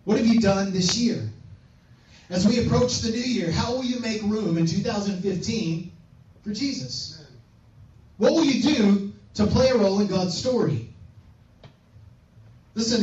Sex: male